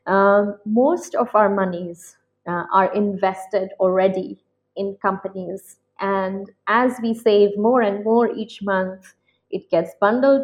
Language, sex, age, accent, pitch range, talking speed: English, female, 20-39, Indian, 190-230 Hz, 130 wpm